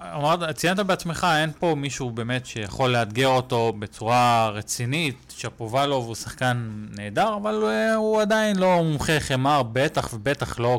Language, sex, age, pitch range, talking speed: Hebrew, male, 20-39, 115-140 Hz, 140 wpm